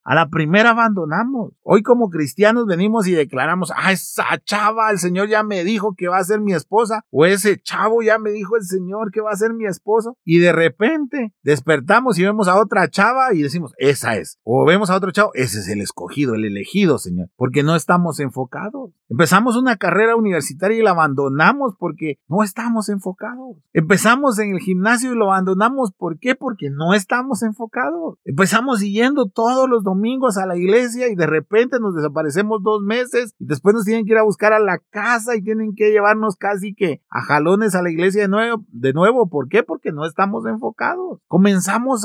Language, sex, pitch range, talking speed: Spanish, male, 155-220 Hz, 200 wpm